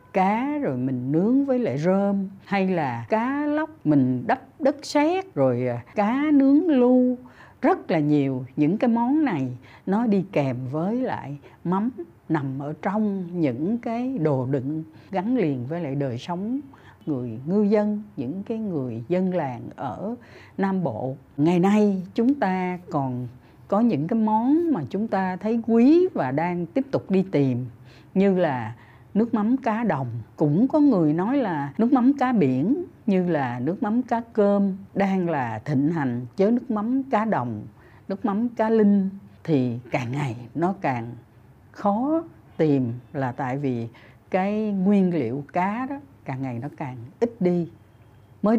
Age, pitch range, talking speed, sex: 60-79, 135-220 Hz, 165 wpm, female